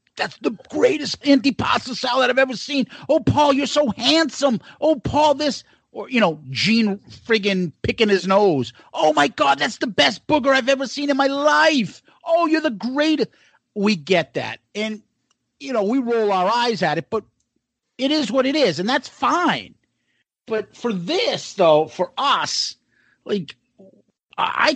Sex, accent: male, American